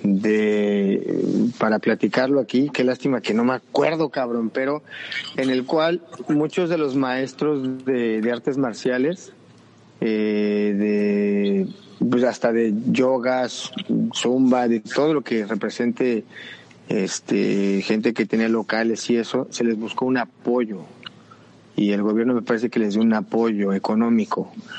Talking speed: 140 wpm